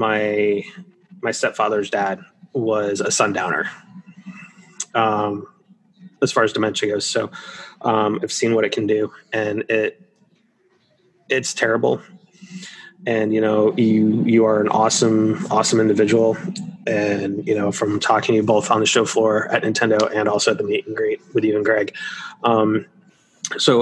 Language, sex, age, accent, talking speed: English, male, 20-39, American, 155 wpm